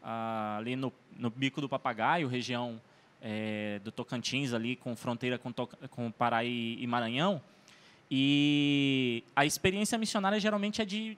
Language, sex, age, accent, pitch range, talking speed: Portuguese, male, 20-39, Brazilian, 125-175 Hz, 140 wpm